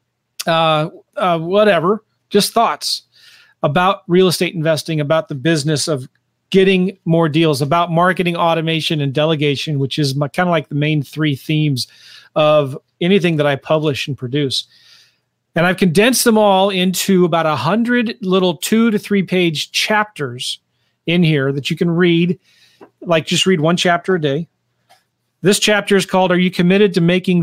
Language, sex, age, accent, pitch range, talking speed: English, male, 40-59, American, 155-185 Hz, 165 wpm